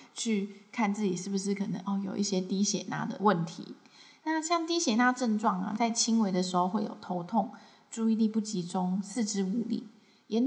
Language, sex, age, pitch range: Chinese, female, 20-39, 195-230 Hz